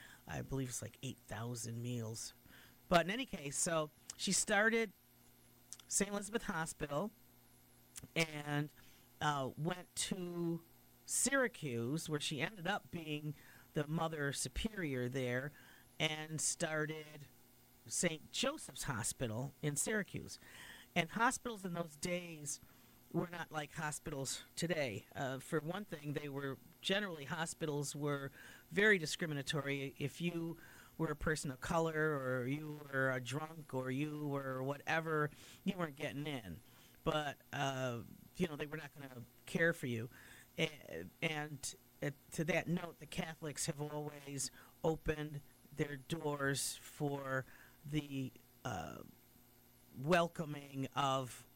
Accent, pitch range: American, 135-165 Hz